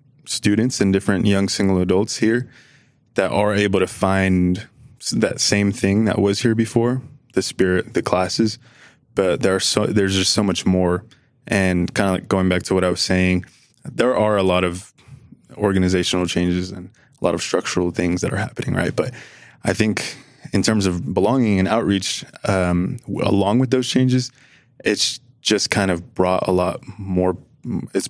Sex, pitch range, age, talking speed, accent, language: male, 90-115 Hz, 20-39, 175 wpm, American, English